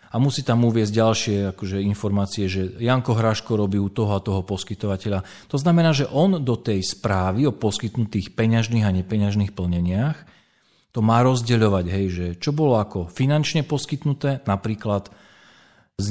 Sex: male